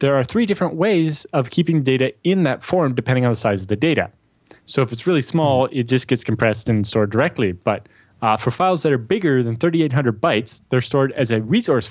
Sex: male